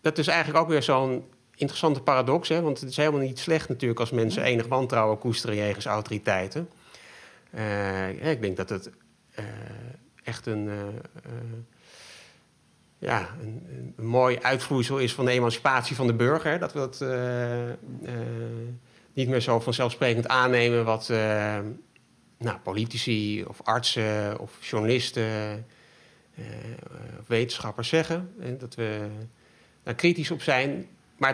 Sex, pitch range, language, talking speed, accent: male, 110-130 Hz, Dutch, 145 wpm, Dutch